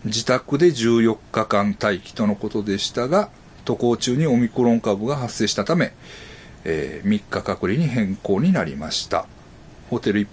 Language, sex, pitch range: Japanese, male, 110-145 Hz